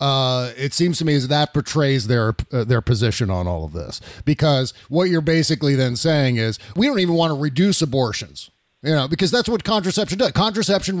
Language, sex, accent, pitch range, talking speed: English, male, American, 125-165 Hz, 200 wpm